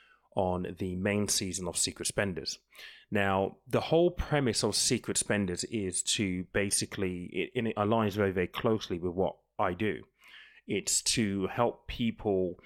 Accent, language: British, English